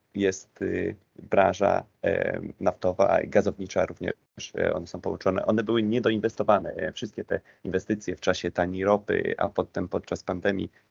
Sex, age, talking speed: male, 30-49, 145 wpm